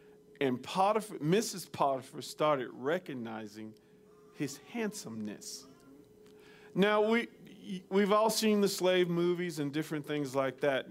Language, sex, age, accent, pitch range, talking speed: English, male, 40-59, American, 150-215 Hz, 115 wpm